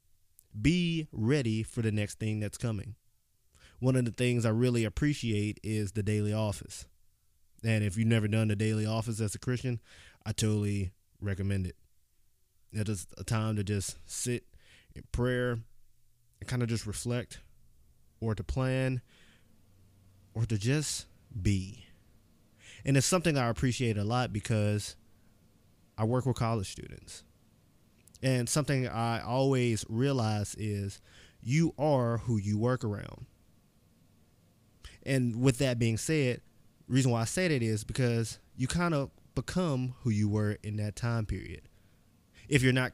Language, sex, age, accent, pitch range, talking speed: English, male, 20-39, American, 105-125 Hz, 150 wpm